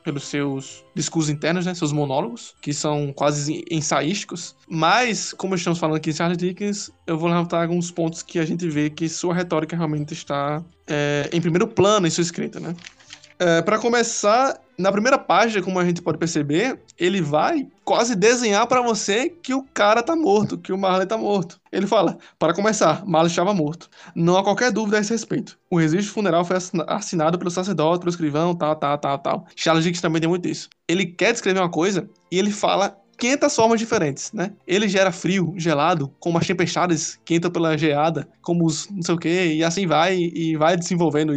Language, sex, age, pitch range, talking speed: Portuguese, male, 20-39, 160-205 Hz, 195 wpm